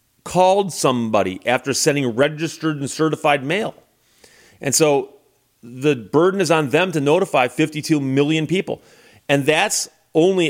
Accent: American